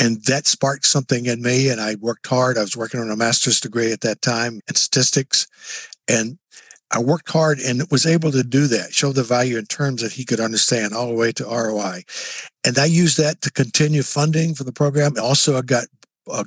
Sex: male